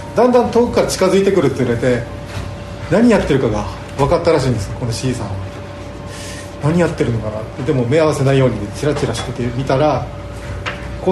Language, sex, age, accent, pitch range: Japanese, male, 40-59, native, 100-155 Hz